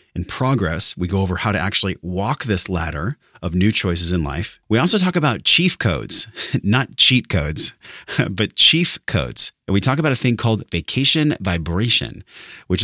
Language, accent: English, American